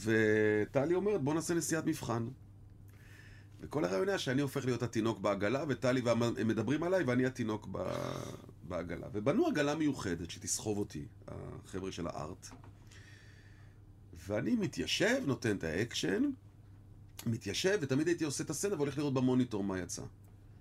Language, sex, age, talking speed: Hebrew, male, 40-59, 130 wpm